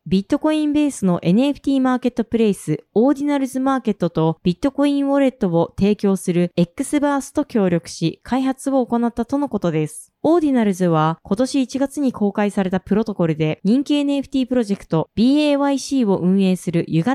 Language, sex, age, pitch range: Japanese, female, 20-39, 180-265 Hz